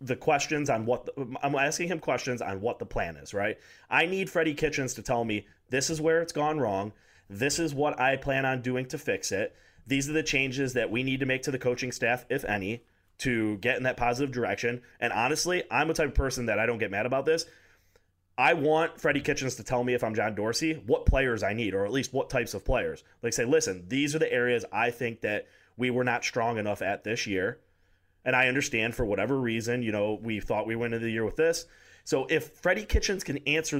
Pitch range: 115-140 Hz